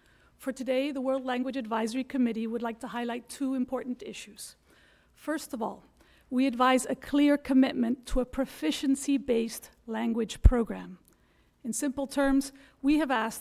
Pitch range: 235-275 Hz